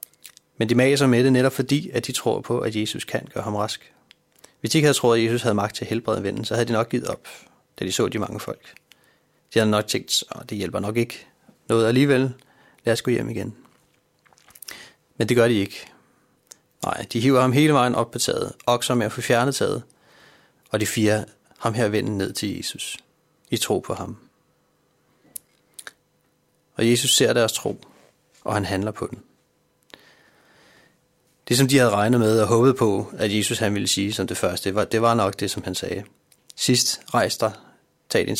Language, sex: Danish, male